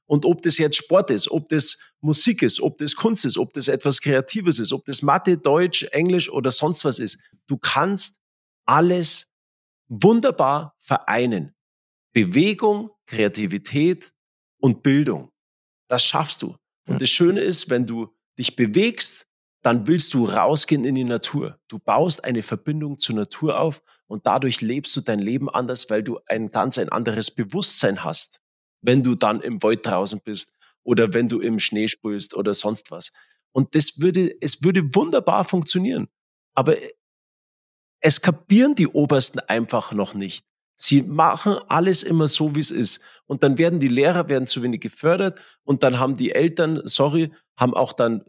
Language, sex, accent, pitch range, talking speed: German, male, German, 120-170 Hz, 165 wpm